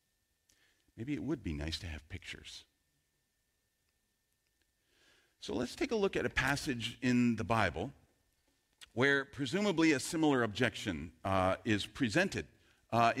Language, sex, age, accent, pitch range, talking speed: English, male, 40-59, American, 100-145 Hz, 125 wpm